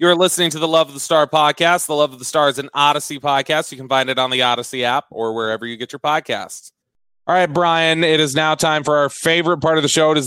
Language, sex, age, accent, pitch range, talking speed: English, male, 30-49, American, 135-165 Hz, 280 wpm